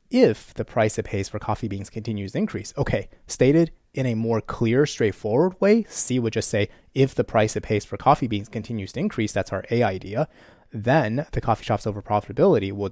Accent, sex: American, male